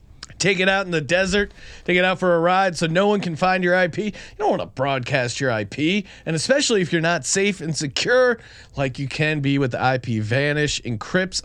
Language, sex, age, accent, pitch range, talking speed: English, male, 30-49, American, 135-175 Hz, 225 wpm